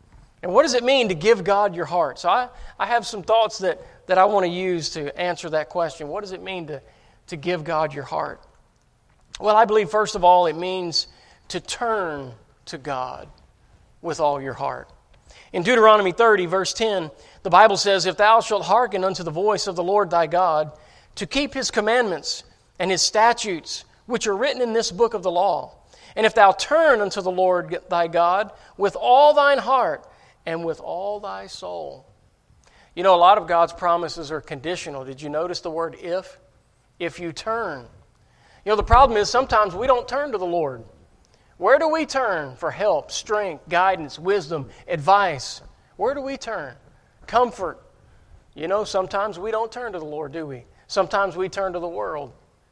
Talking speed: 190 wpm